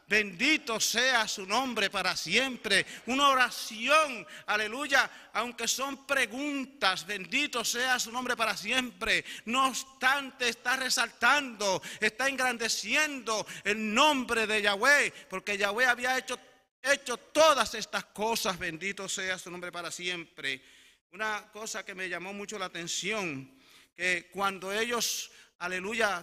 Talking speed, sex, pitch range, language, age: 125 wpm, male, 195-255 Hz, English, 40-59